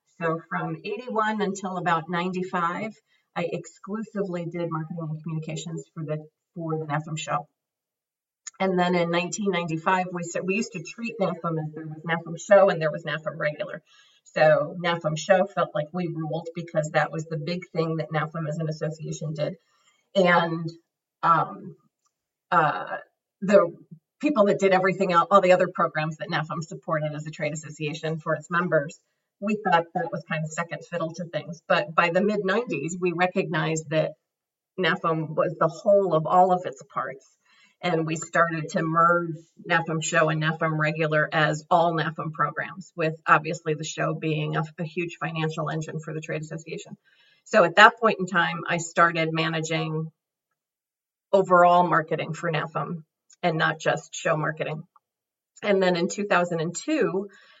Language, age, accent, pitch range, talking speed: English, 40-59, American, 160-180 Hz, 165 wpm